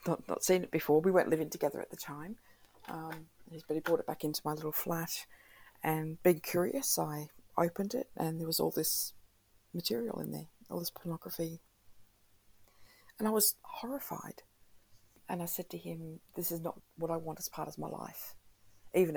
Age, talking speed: 40-59, 190 wpm